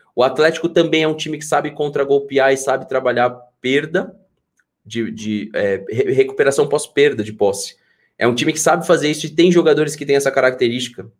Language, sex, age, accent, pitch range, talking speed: Portuguese, male, 20-39, Brazilian, 125-170 Hz, 180 wpm